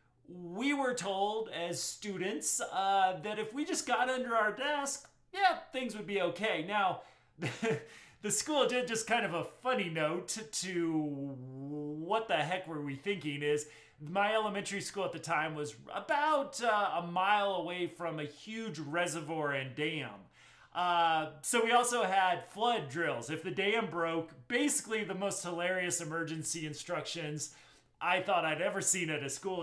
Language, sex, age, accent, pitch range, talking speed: English, male, 30-49, American, 165-235 Hz, 160 wpm